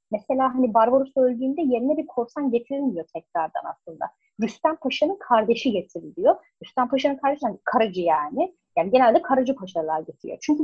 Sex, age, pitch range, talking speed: female, 30-49, 195-260 Hz, 150 wpm